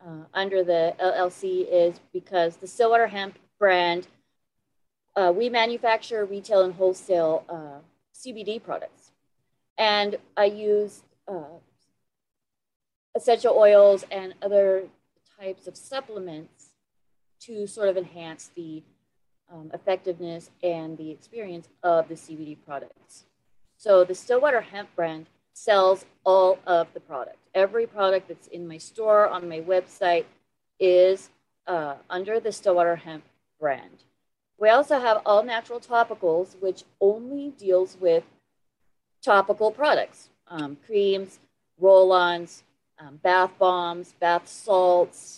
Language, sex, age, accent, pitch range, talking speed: English, female, 30-49, American, 170-210 Hz, 115 wpm